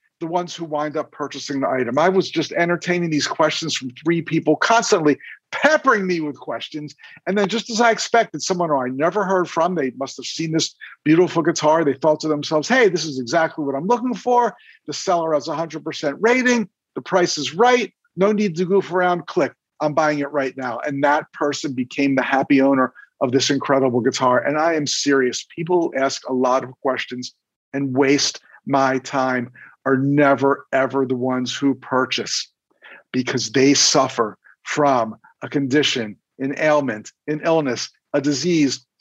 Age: 50-69